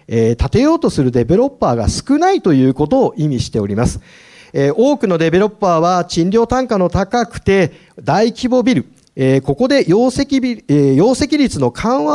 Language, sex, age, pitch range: Japanese, male, 40-59, 145-245 Hz